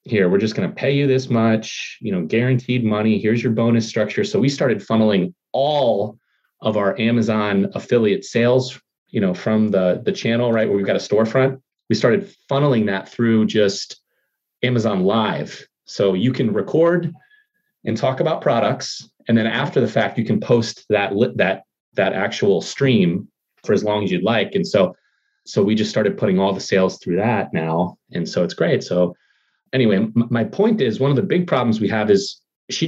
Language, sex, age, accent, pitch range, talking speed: English, male, 30-49, American, 110-140 Hz, 190 wpm